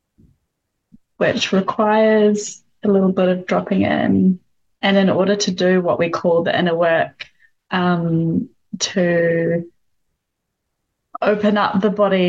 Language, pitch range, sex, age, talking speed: English, 170-195 Hz, female, 10-29, 120 wpm